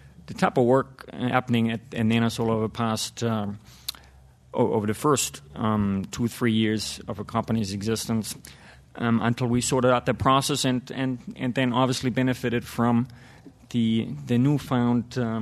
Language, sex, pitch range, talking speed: English, male, 110-125 Hz, 150 wpm